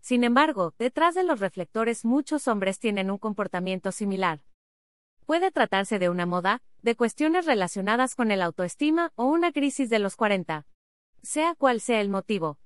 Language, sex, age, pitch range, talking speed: Spanish, female, 30-49, 190-255 Hz, 160 wpm